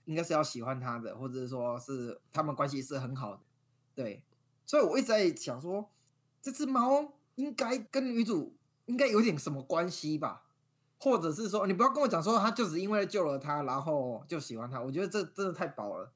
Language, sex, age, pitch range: Chinese, male, 20-39, 130-170 Hz